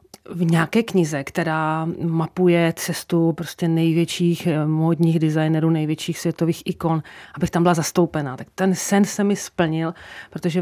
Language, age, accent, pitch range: Czech, 30-49, native, 155-180 Hz